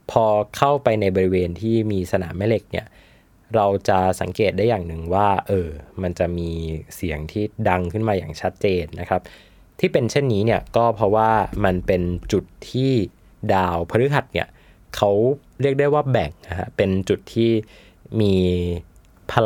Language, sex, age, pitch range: Thai, male, 20-39, 90-110 Hz